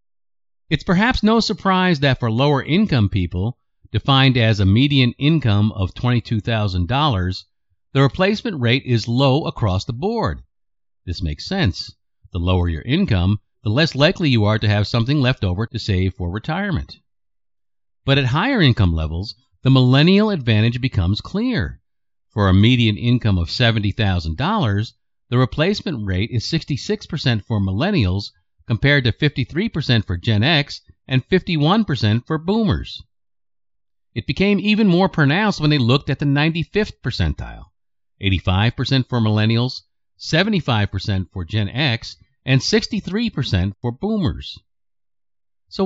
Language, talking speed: English, 130 wpm